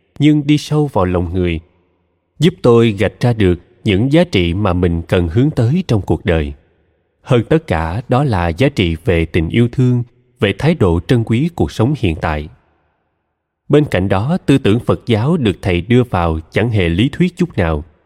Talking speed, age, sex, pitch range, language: 195 wpm, 20-39, male, 90-135 Hz, Vietnamese